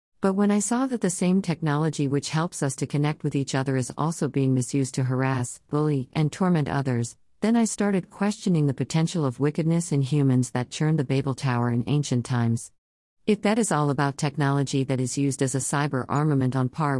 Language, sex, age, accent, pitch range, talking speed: English, female, 50-69, American, 130-160 Hz, 210 wpm